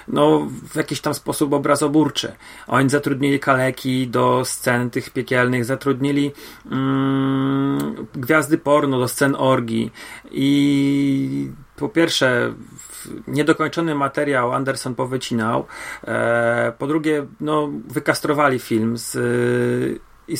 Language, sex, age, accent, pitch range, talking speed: Polish, male, 40-59, native, 125-145 Hz, 105 wpm